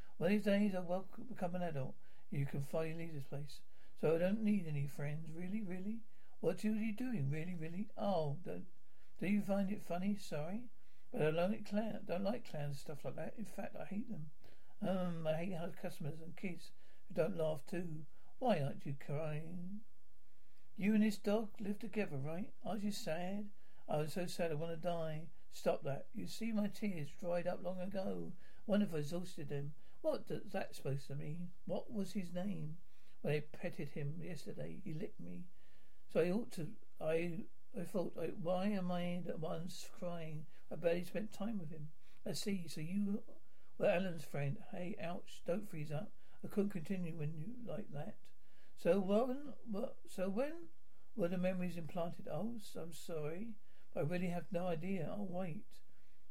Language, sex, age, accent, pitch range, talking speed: English, male, 60-79, British, 160-205 Hz, 190 wpm